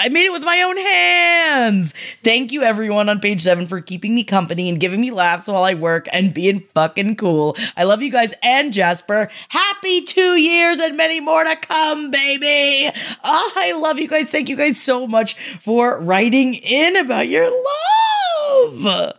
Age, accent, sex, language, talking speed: 20-39, American, female, English, 180 wpm